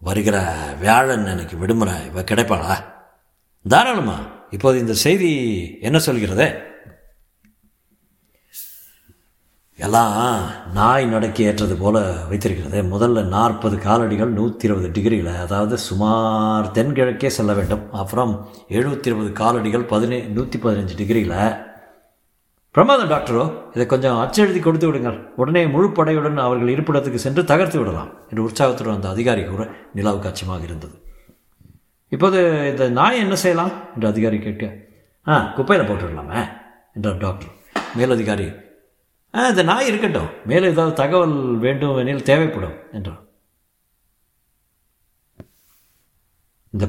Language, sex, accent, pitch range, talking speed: Tamil, male, native, 100-135 Hz, 110 wpm